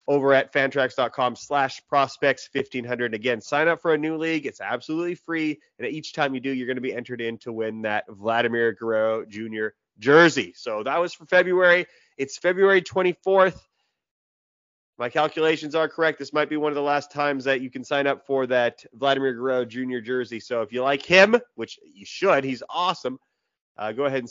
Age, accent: 30-49, American